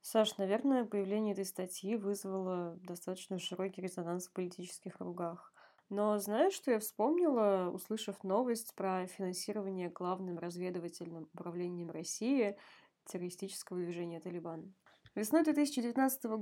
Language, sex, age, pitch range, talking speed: Russian, female, 20-39, 180-220 Hz, 110 wpm